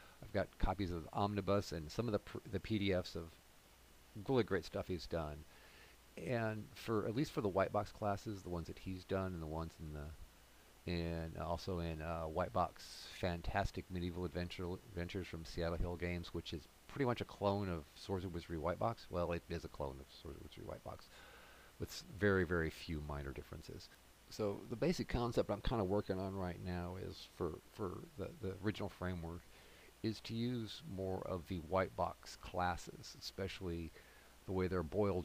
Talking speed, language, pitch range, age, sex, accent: 190 wpm, English, 85-100 Hz, 40-59, male, American